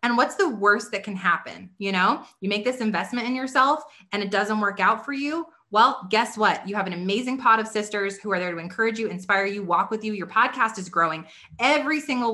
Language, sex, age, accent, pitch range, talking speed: English, female, 20-39, American, 190-235 Hz, 240 wpm